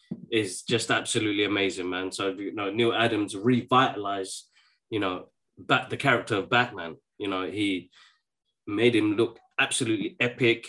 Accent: British